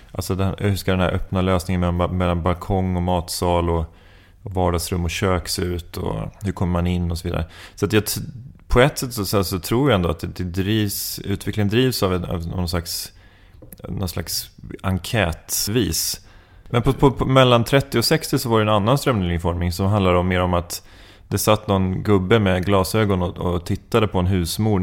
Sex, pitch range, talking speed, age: male, 90-105 Hz, 185 wpm, 30-49